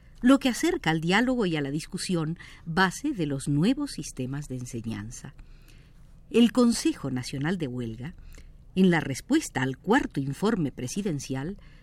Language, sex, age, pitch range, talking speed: Spanish, female, 50-69, 145-225 Hz, 140 wpm